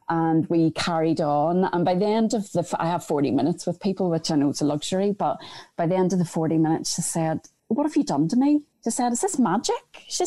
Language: English